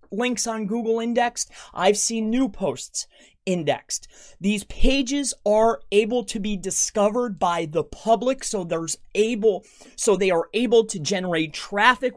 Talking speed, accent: 145 wpm, American